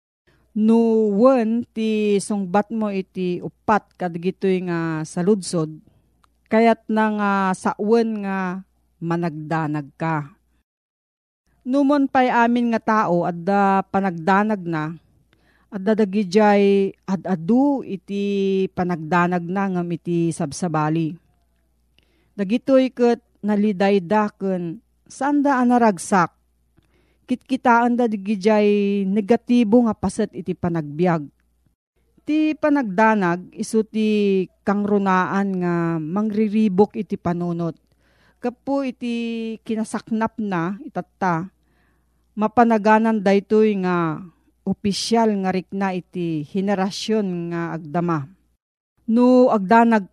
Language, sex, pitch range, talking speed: Filipino, female, 175-220 Hz, 95 wpm